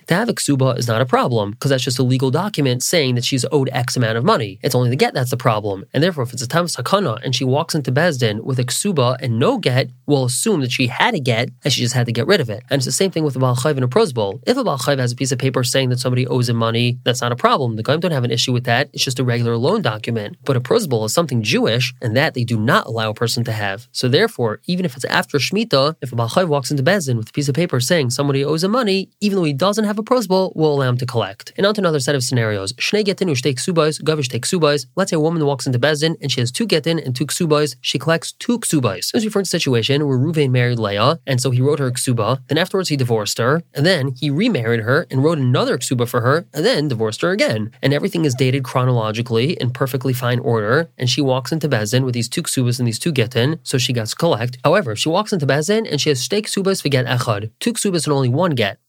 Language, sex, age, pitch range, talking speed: English, male, 20-39, 125-155 Hz, 260 wpm